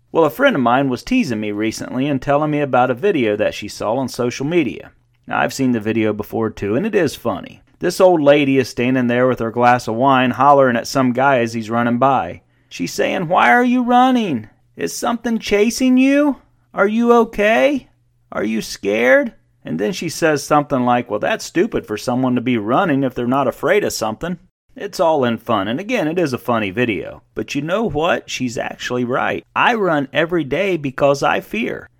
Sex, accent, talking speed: male, American, 210 wpm